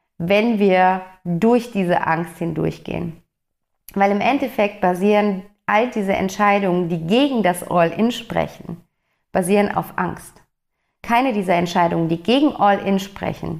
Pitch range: 175-210 Hz